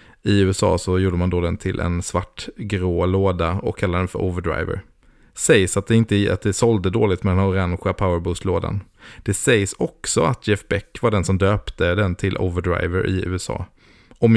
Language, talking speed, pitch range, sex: Swedish, 190 wpm, 90-110 Hz, male